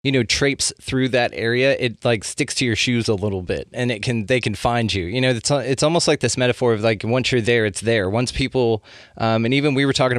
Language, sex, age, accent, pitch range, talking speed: English, male, 20-39, American, 110-130 Hz, 265 wpm